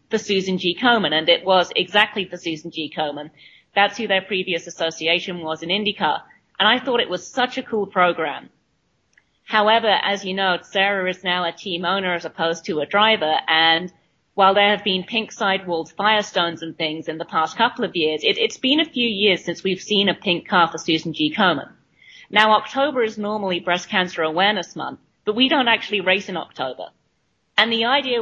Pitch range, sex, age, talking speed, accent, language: 165-205 Hz, female, 40-59, 200 wpm, British, English